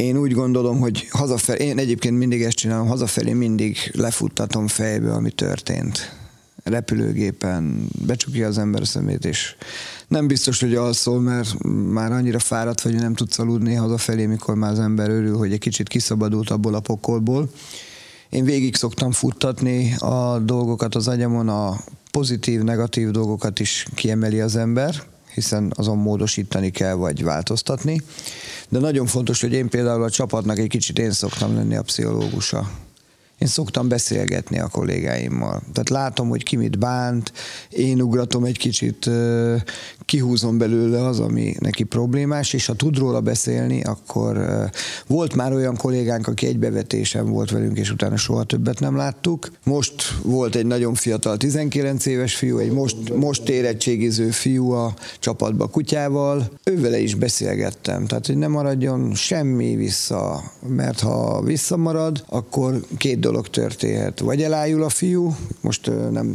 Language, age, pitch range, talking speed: Hungarian, 30-49, 110-130 Hz, 150 wpm